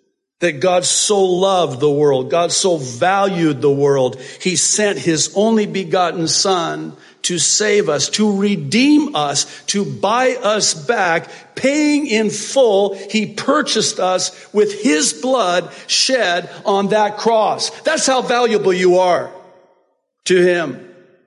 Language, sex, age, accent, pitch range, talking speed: English, male, 50-69, American, 155-220 Hz, 135 wpm